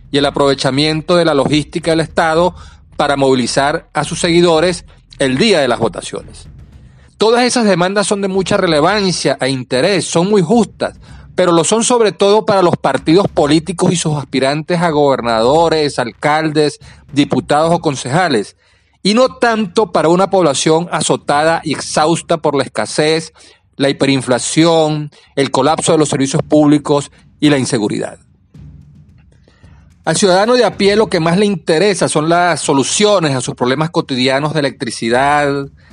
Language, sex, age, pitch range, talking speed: Spanish, male, 40-59, 135-165 Hz, 150 wpm